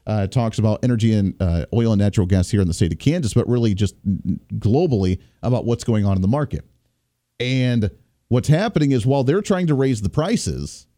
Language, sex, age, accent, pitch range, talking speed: English, male, 40-59, American, 110-150 Hz, 210 wpm